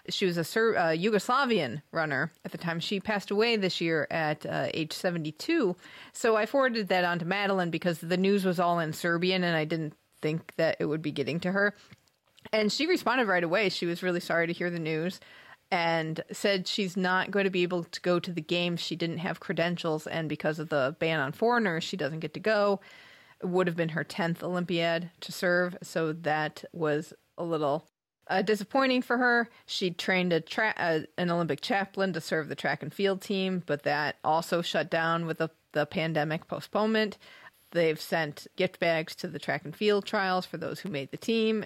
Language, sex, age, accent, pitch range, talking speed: English, female, 30-49, American, 160-195 Hz, 205 wpm